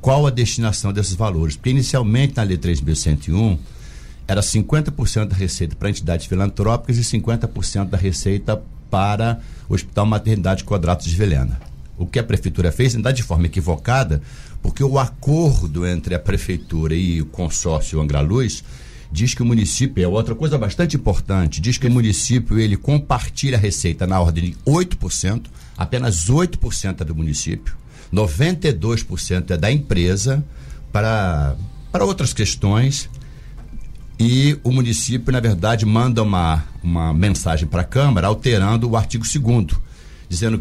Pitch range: 90-120 Hz